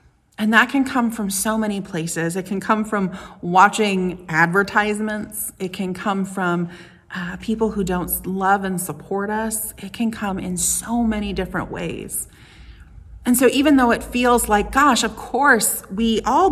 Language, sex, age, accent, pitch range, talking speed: English, female, 30-49, American, 165-215 Hz, 165 wpm